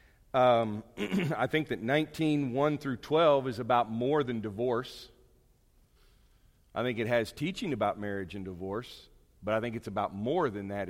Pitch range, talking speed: 105-130 Hz, 165 wpm